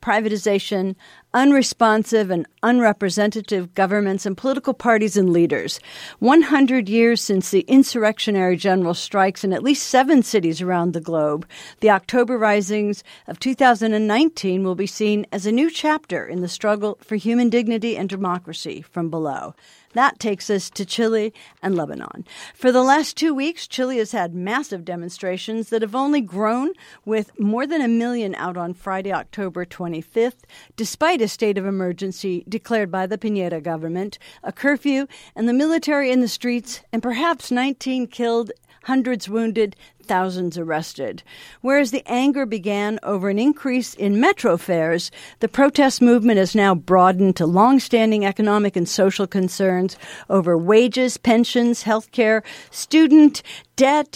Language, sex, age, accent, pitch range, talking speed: English, female, 50-69, American, 195-245 Hz, 150 wpm